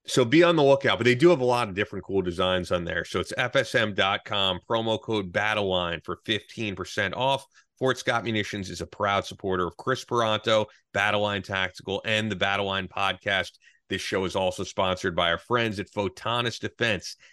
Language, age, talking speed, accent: English, 30-49, 185 wpm, American